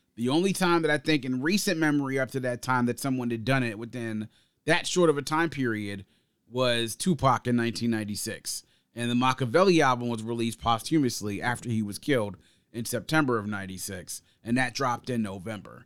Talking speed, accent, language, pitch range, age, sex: 185 wpm, American, English, 120-155 Hz, 30-49, male